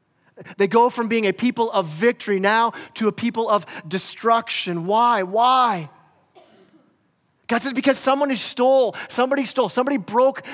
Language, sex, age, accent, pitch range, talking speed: English, male, 30-49, American, 155-200 Hz, 140 wpm